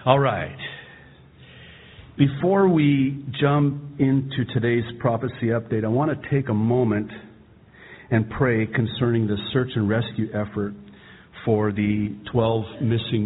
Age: 50-69